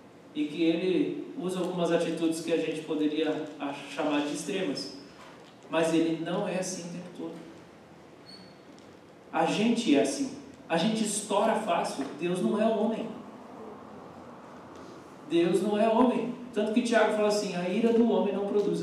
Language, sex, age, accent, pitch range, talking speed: Portuguese, male, 40-59, Brazilian, 165-245 Hz, 155 wpm